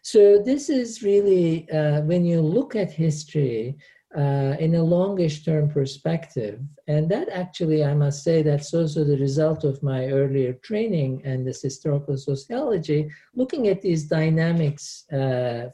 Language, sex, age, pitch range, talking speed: English, male, 50-69, 140-180 Hz, 145 wpm